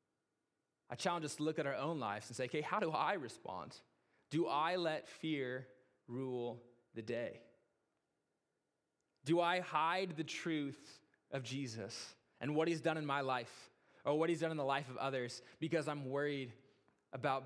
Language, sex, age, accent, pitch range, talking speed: English, male, 20-39, American, 115-145 Hz, 170 wpm